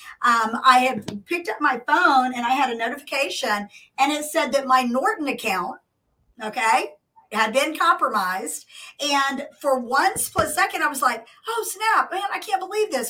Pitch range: 255-360 Hz